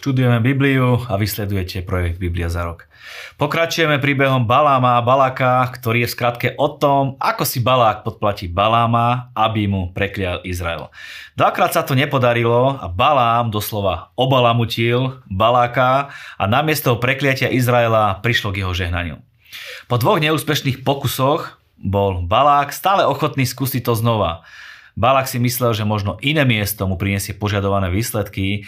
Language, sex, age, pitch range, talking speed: Slovak, male, 30-49, 95-125 Hz, 140 wpm